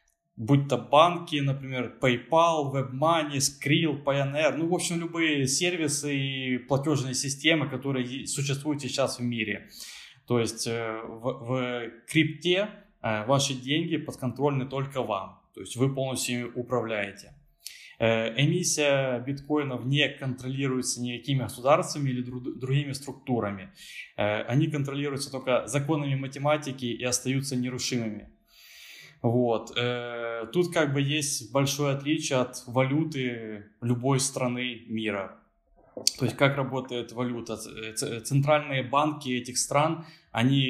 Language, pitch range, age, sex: Ukrainian, 125-145 Hz, 20-39, male